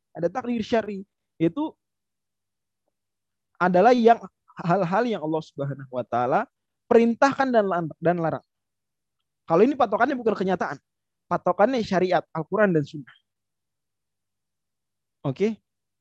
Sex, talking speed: male, 95 wpm